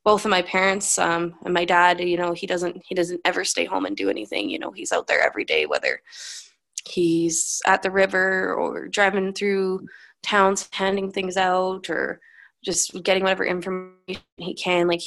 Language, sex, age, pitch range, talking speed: English, female, 20-39, 175-200 Hz, 185 wpm